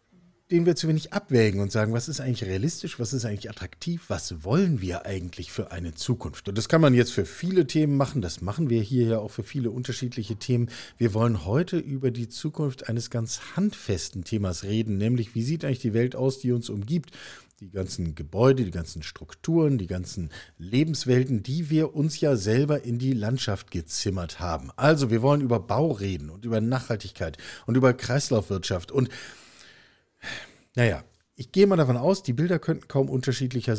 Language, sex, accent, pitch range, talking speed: German, male, German, 100-140 Hz, 185 wpm